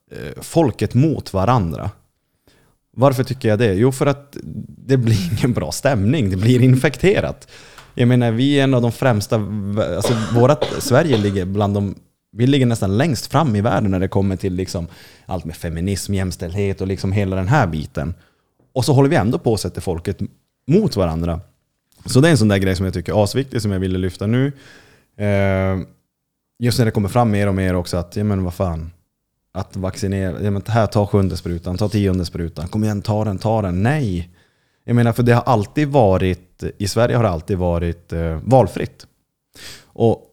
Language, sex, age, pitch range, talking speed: Swedish, male, 20-39, 95-120 Hz, 190 wpm